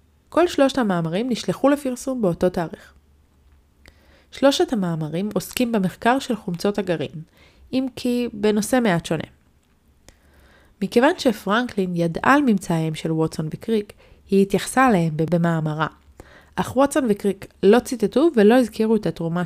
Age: 20-39